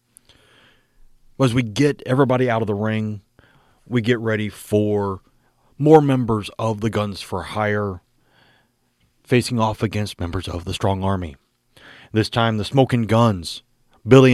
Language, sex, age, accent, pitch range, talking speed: English, male, 30-49, American, 105-130 Hz, 140 wpm